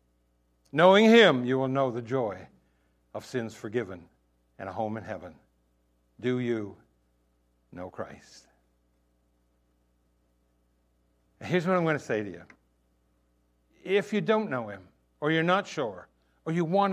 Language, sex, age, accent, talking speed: English, male, 60-79, American, 140 wpm